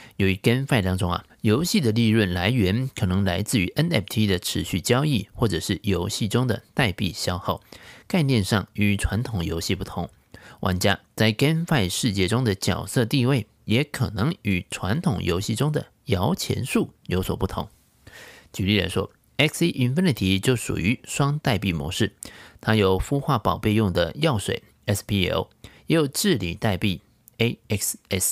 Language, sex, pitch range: Chinese, male, 95-130 Hz